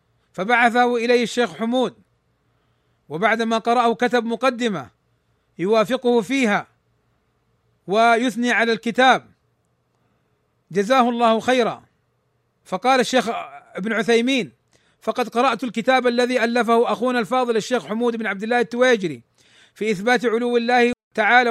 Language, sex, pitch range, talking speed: Arabic, male, 220-245 Hz, 105 wpm